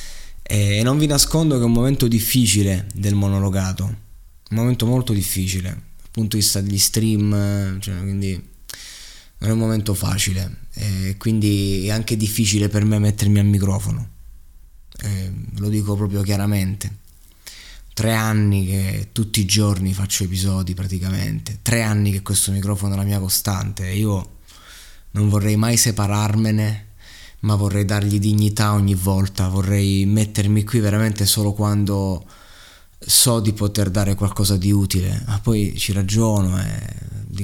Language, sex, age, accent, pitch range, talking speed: Italian, male, 20-39, native, 95-105 Hz, 145 wpm